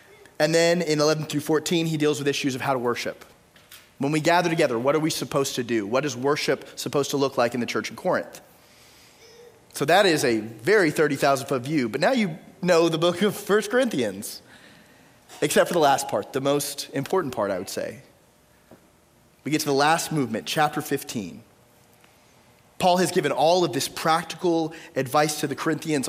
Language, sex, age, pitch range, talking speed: English, male, 30-49, 130-160 Hz, 195 wpm